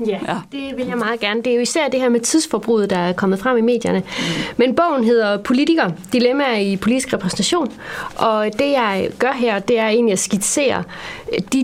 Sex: female